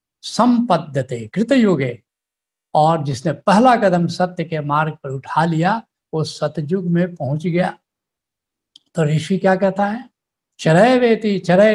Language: Hindi